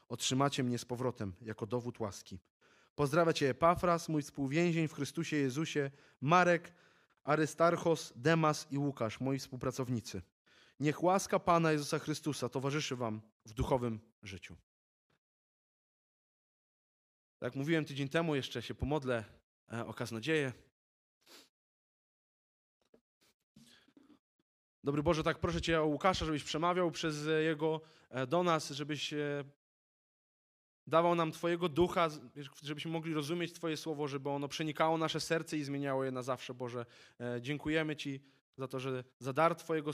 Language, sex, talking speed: Polish, male, 125 wpm